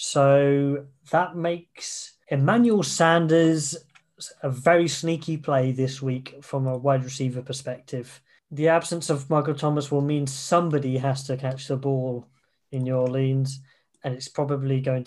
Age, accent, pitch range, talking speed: 20-39, British, 130-155 Hz, 145 wpm